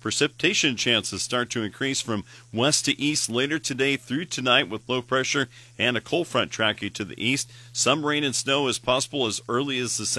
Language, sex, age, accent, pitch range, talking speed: English, male, 40-59, American, 105-125 Hz, 200 wpm